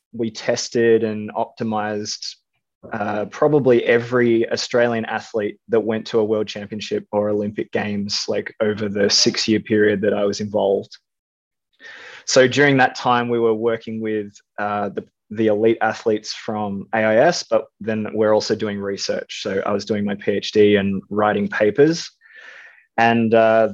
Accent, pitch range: Australian, 105-120 Hz